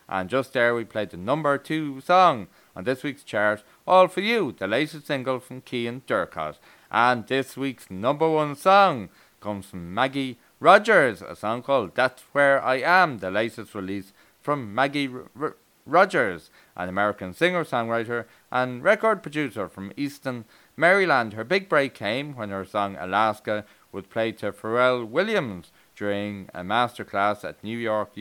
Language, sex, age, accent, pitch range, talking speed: English, male, 30-49, Irish, 105-150 Hz, 160 wpm